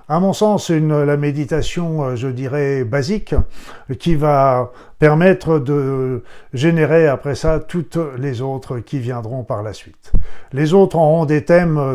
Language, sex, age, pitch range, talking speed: French, male, 50-69, 130-155 Hz, 145 wpm